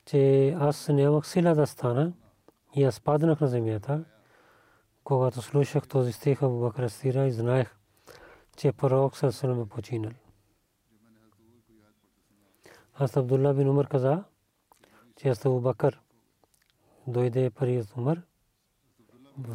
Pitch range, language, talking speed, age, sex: 115-140 Hz, Bulgarian, 125 wpm, 40-59, male